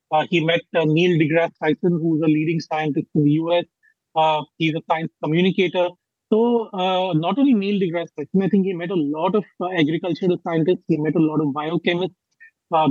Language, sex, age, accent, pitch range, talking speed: Hindi, male, 30-49, native, 160-195 Hz, 210 wpm